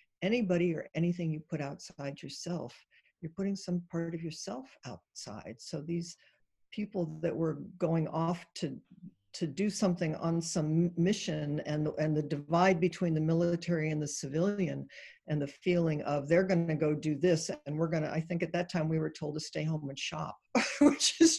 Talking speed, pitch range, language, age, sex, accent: 185 wpm, 150-175 Hz, English, 60-79, female, American